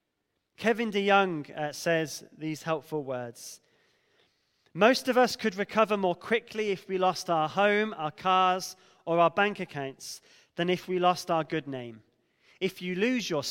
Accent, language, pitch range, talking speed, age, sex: British, English, 150-200 Hz, 155 wpm, 20-39, male